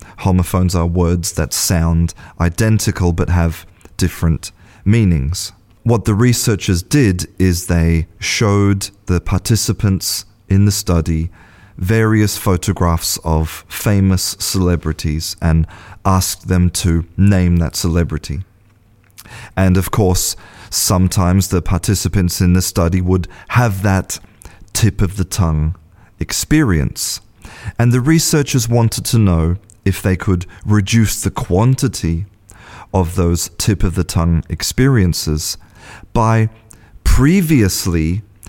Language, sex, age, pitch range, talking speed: English, male, 30-49, 90-110 Hz, 110 wpm